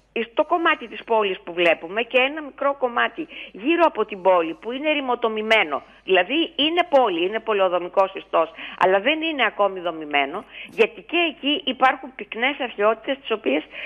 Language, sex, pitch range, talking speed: Greek, female, 190-290 Hz, 155 wpm